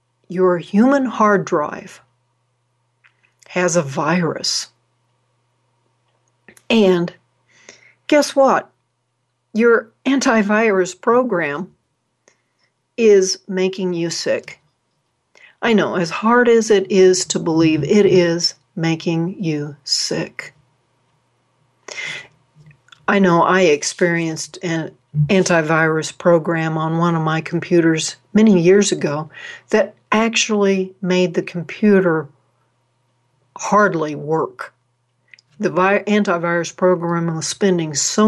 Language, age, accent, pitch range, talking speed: English, 60-79, American, 155-205 Hz, 90 wpm